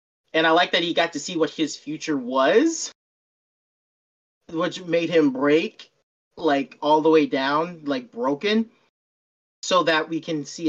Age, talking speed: 30-49, 155 wpm